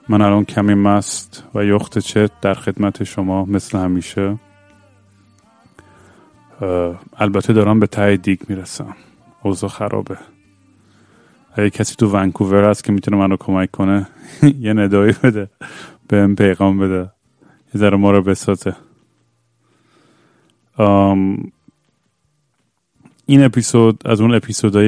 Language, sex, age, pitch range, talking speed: Persian, male, 30-49, 100-115 Hz, 120 wpm